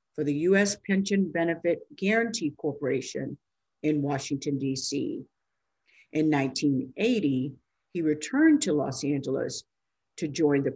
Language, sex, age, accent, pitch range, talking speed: English, female, 50-69, American, 140-190 Hz, 110 wpm